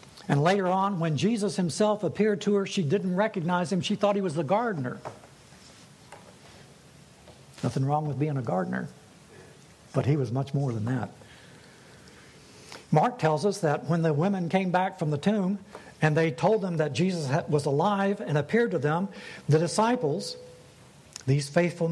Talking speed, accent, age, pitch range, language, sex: 165 wpm, American, 60-79, 150-200 Hz, English, male